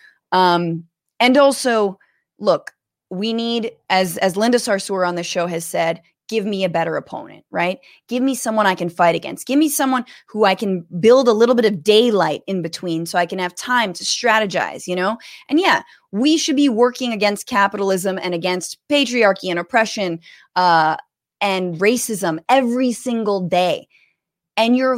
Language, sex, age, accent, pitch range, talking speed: English, female, 20-39, American, 185-275 Hz, 175 wpm